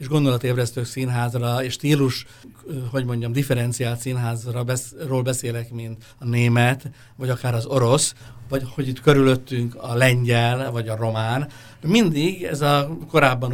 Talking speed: 135 wpm